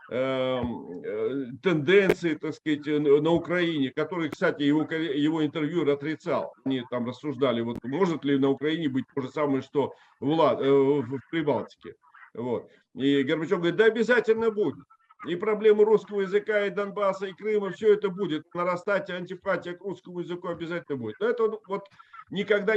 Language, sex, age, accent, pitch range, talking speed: Russian, male, 50-69, native, 150-200 Hz, 145 wpm